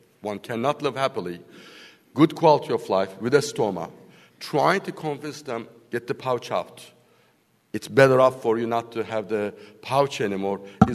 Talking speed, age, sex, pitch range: 170 wpm, 60-79, male, 100-135 Hz